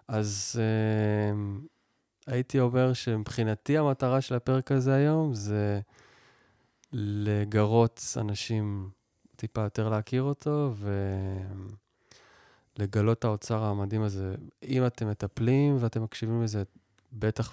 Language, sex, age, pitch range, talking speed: Hebrew, male, 20-39, 100-120 Hz, 95 wpm